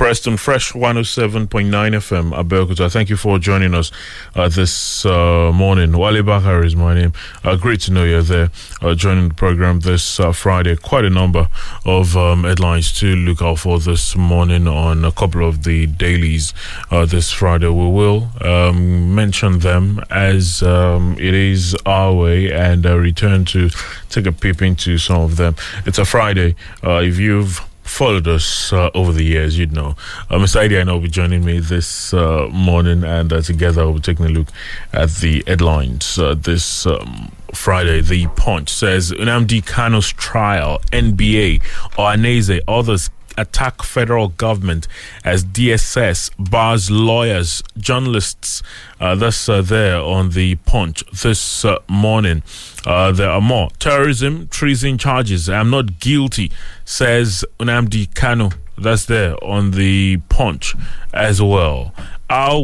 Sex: male